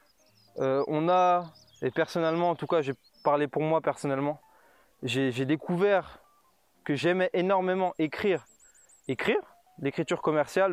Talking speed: 130 wpm